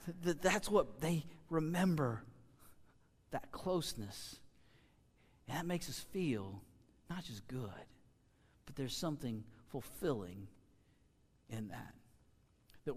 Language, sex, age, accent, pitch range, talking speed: English, male, 40-59, American, 135-180 Hz, 95 wpm